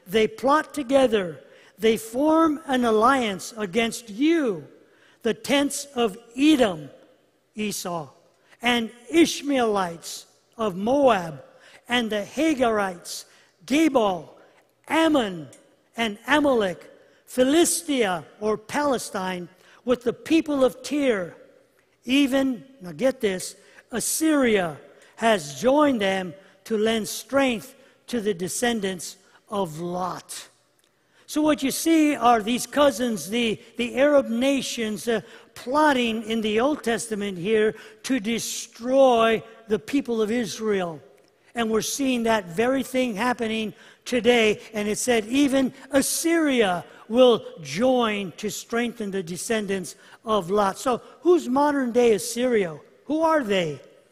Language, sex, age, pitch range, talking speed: English, male, 50-69, 210-265 Hz, 115 wpm